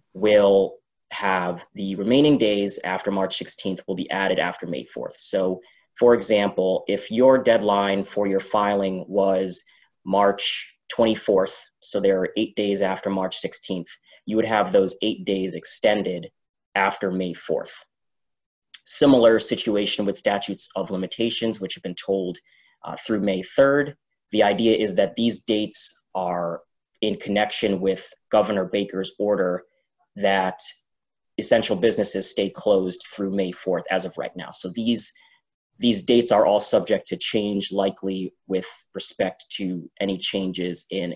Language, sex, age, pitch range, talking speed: English, male, 20-39, 95-105 Hz, 145 wpm